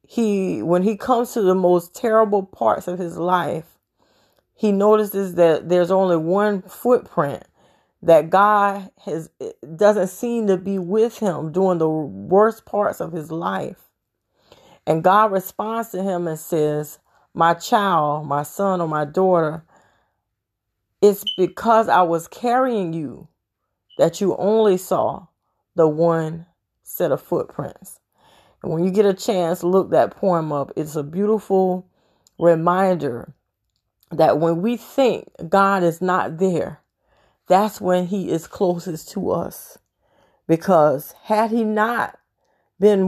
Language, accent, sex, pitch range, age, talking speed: English, American, female, 165-205 Hz, 30-49, 135 wpm